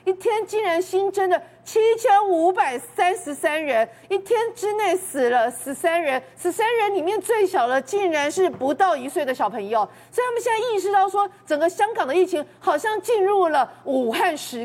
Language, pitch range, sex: Chinese, 300-400 Hz, female